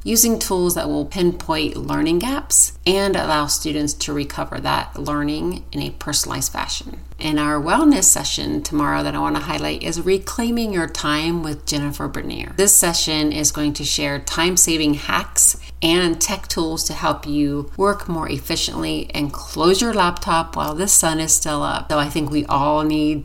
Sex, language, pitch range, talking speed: female, English, 145-175 Hz, 175 wpm